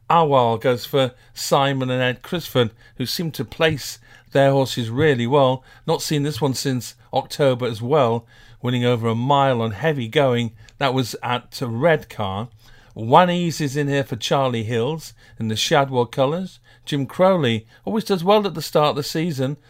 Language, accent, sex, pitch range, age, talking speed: English, British, male, 115-145 Hz, 50-69, 175 wpm